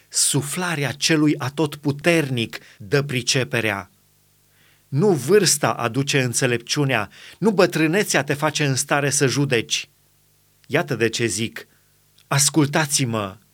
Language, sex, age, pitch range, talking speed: Romanian, male, 30-49, 125-155 Hz, 100 wpm